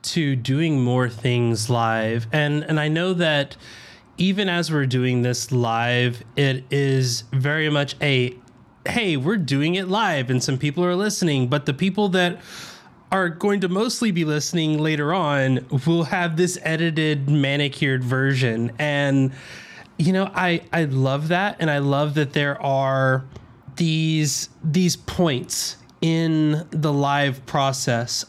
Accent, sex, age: American, male, 20-39